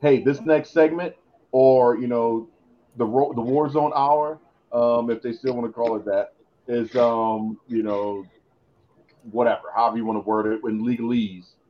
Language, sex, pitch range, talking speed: English, male, 110-135 Hz, 180 wpm